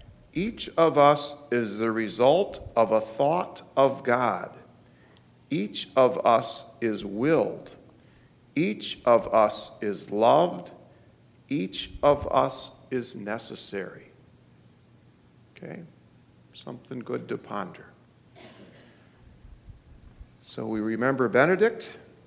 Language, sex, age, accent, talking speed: English, male, 50-69, American, 95 wpm